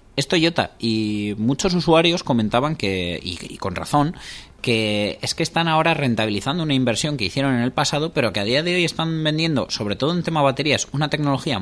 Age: 20-39